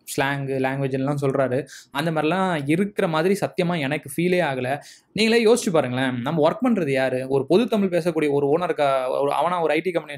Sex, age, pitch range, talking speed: male, 20-39, 135-180 Hz, 160 wpm